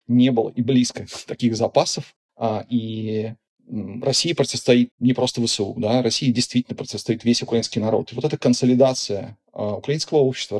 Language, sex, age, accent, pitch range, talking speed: Russian, male, 30-49, native, 115-130 Hz, 140 wpm